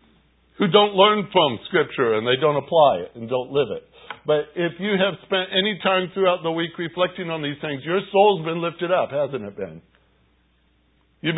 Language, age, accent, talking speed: English, 60-79, American, 195 wpm